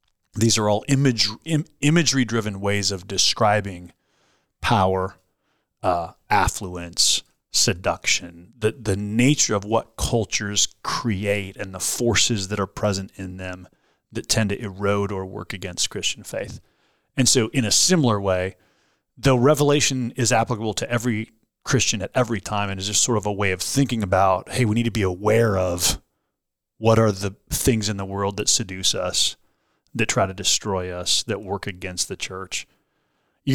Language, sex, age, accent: English, male, 30-49, American